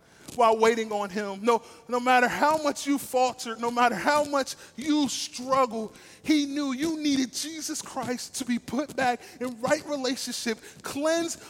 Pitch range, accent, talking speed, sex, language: 230-285 Hz, American, 160 wpm, male, English